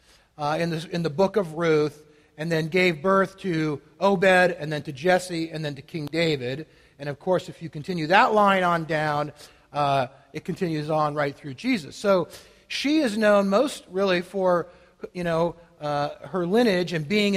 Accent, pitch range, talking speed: American, 155-205 Hz, 185 wpm